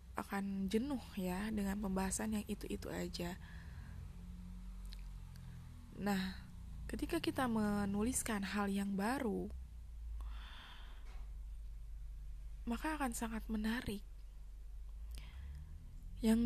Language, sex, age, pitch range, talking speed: Indonesian, female, 20-39, 145-225 Hz, 75 wpm